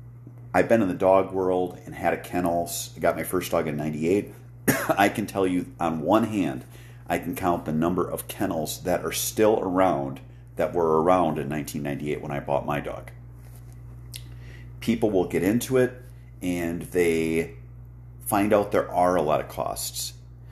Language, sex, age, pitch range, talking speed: English, male, 40-59, 75-115 Hz, 175 wpm